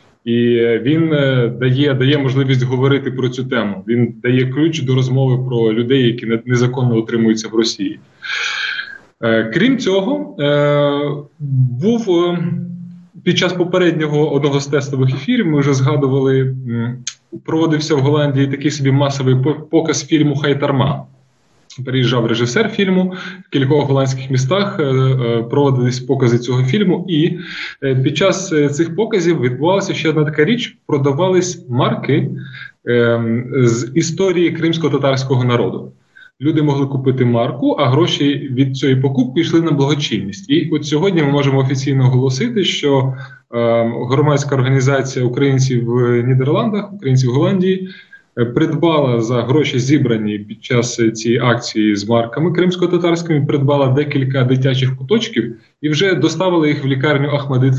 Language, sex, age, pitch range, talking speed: Russian, male, 20-39, 125-160 Hz, 130 wpm